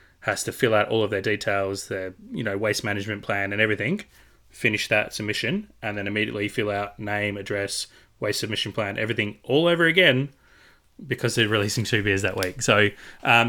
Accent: Australian